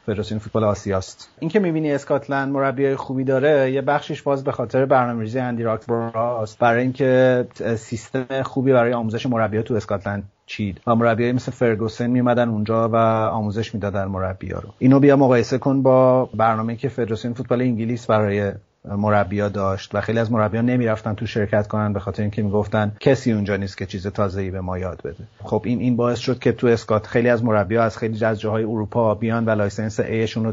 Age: 30-49